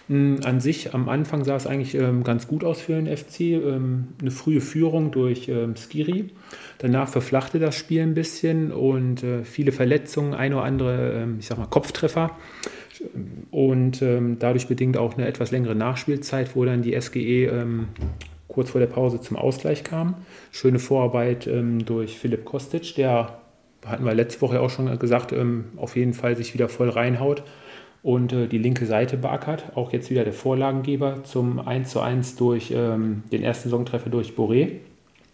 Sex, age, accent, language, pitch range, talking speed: male, 40-59, German, German, 120-140 Hz, 160 wpm